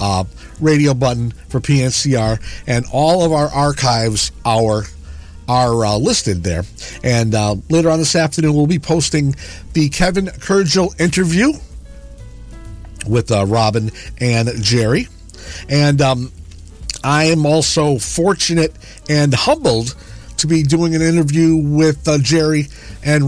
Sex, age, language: male, 50-69, English